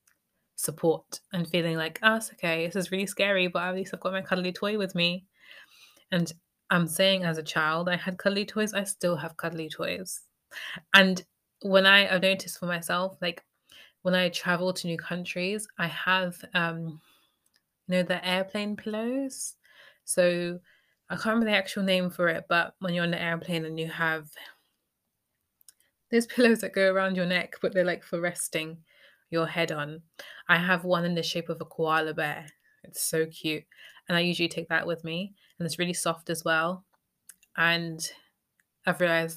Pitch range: 165-185 Hz